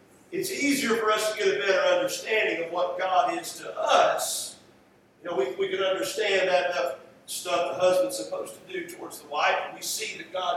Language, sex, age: English, male, 50-69